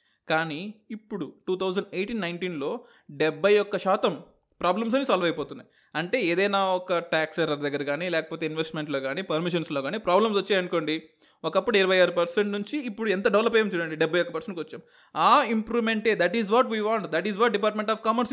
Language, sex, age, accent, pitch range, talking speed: Telugu, male, 20-39, native, 160-205 Hz, 175 wpm